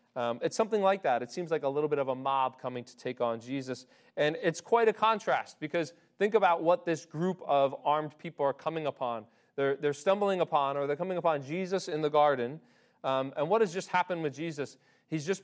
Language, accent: English, American